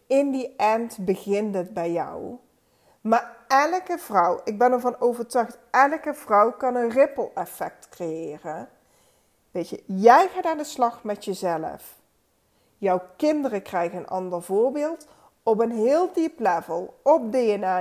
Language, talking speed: Dutch, 145 wpm